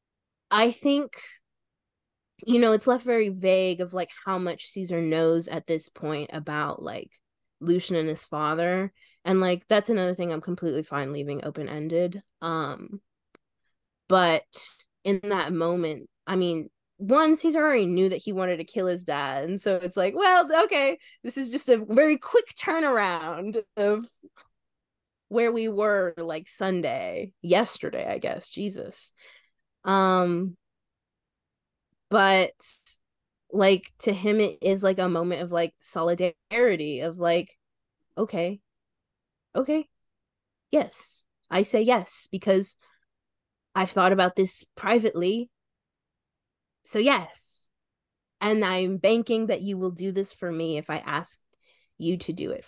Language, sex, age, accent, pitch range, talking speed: English, female, 20-39, American, 170-215 Hz, 135 wpm